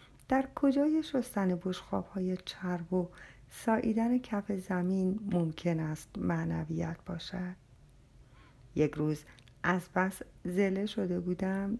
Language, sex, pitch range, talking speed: Persian, female, 165-230 Hz, 105 wpm